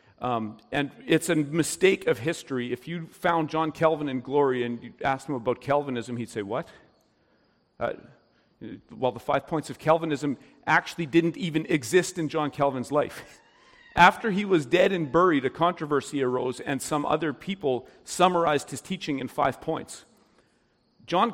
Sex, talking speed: male, 165 wpm